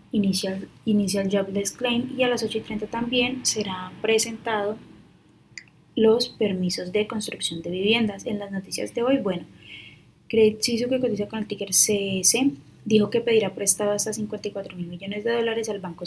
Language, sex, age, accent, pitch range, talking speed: Spanish, female, 10-29, Colombian, 195-225 Hz, 160 wpm